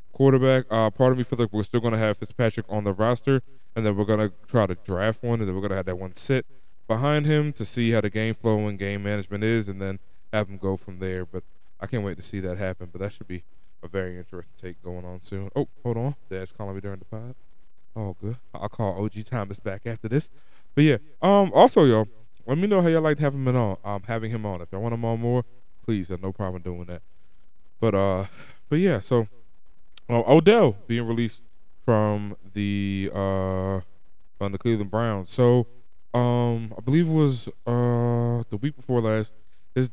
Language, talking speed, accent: English, 225 wpm, American